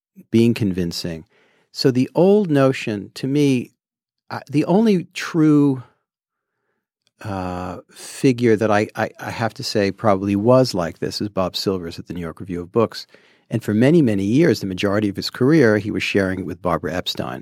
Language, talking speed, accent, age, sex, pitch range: English, 175 wpm, American, 50-69, male, 95-130 Hz